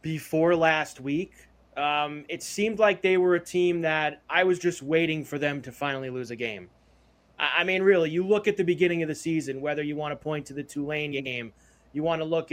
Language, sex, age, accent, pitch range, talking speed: English, male, 30-49, American, 150-185 Hz, 225 wpm